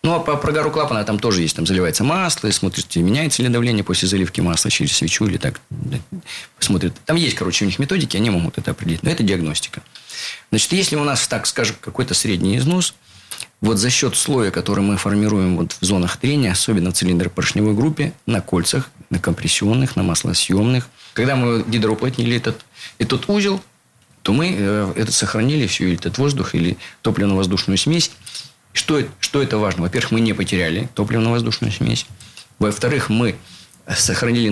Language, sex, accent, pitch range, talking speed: Russian, male, native, 95-125 Hz, 170 wpm